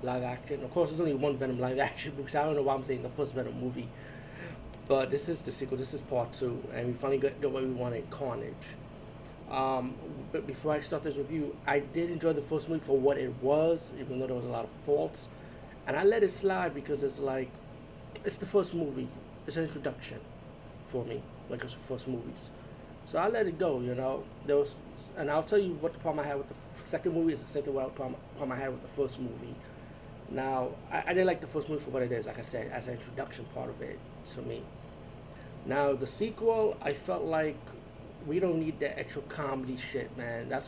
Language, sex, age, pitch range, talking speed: English, male, 30-49, 130-150 Hz, 235 wpm